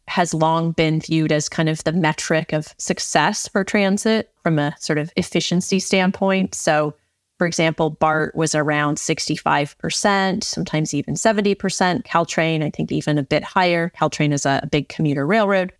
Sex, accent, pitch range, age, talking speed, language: female, American, 155-185 Hz, 30-49, 165 wpm, English